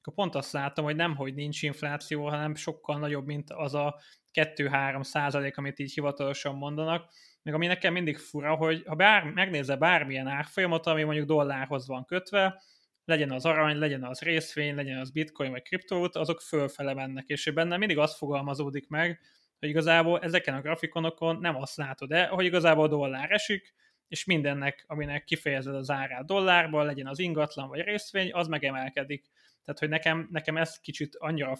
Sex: male